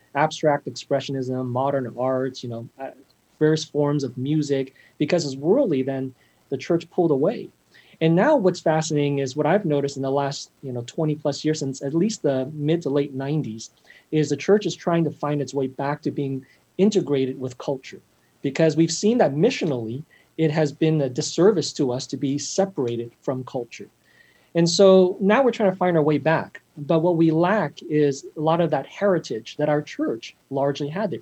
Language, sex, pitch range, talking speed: English, male, 140-170 Hz, 190 wpm